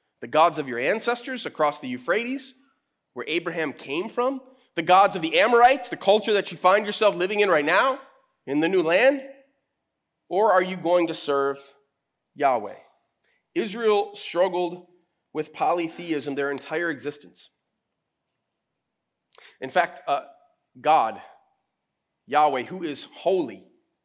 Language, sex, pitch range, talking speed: English, male, 155-205 Hz, 130 wpm